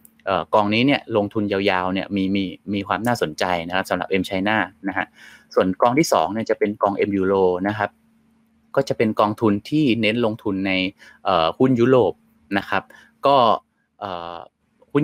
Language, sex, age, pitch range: Thai, male, 20-39, 95-120 Hz